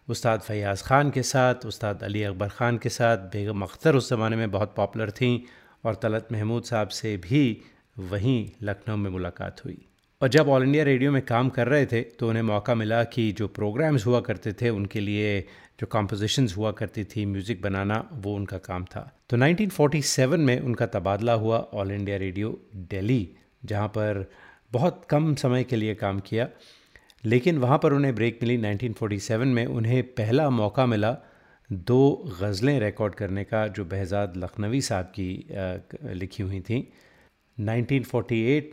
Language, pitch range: Hindi, 100-125 Hz